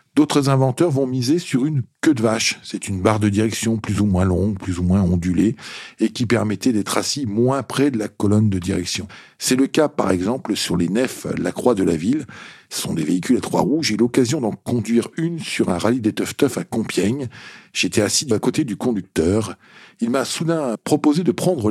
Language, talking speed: French, 220 wpm